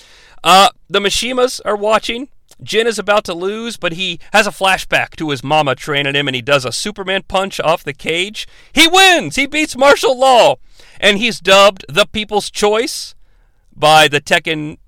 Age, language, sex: 40-59, English, male